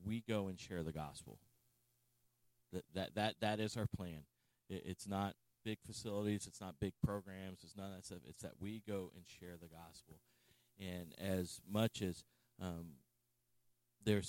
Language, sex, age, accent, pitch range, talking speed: English, male, 40-59, American, 90-115 Hz, 170 wpm